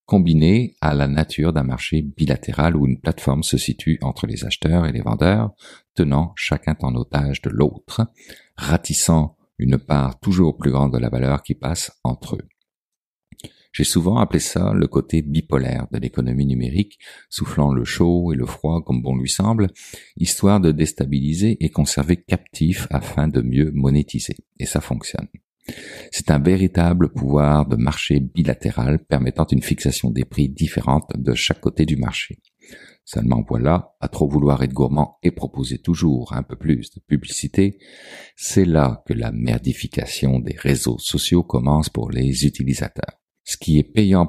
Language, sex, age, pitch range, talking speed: French, male, 50-69, 65-80 Hz, 160 wpm